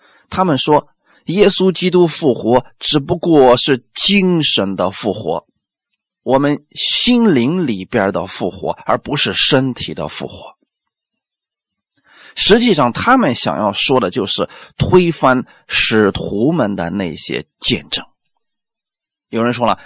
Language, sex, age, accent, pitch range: Chinese, male, 30-49, native, 125-180 Hz